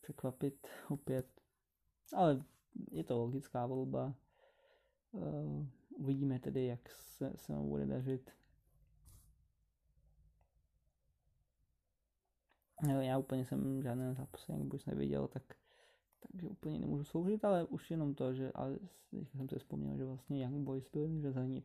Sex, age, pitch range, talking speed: male, 20-39, 120-150 Hz, 120 wpm